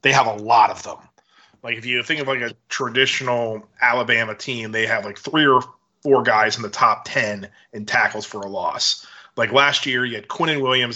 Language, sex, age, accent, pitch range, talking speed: English, male, 30-49, American, 120-150 Hz, 220 wpm